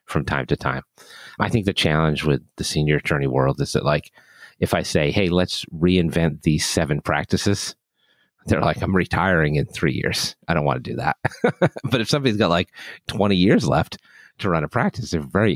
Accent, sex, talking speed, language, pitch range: American, male, 200 wpm, English, 75-95 Hz